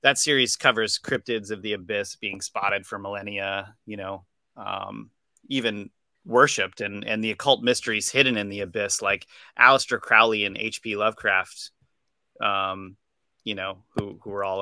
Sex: male